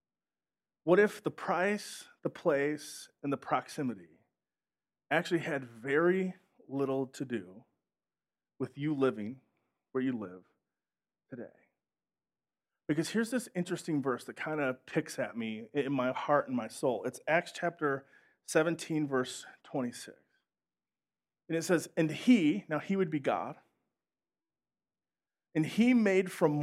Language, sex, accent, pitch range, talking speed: English, male, American, 145-190 Hz, 135 wpm